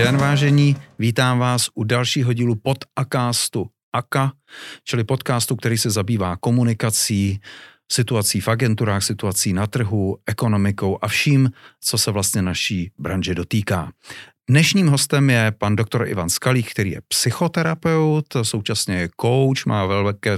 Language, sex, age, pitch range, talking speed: Czech, male, 40-59, 105-135 Hz, 135 wpm